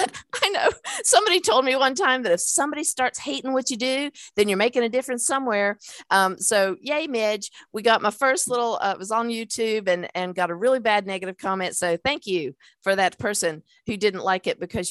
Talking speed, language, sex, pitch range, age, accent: 210 wpm, English, female, 180-250 Hz, 50-69, American